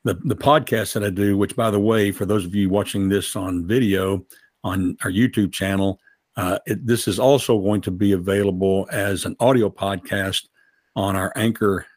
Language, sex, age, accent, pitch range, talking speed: English, male, 60-79, American, 100-115 Hz, 190 wpm